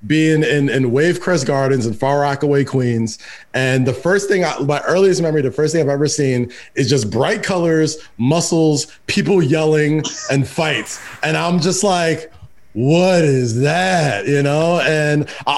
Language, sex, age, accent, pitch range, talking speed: English, male, 20-39, American, 130-165 Hz, 160 wpm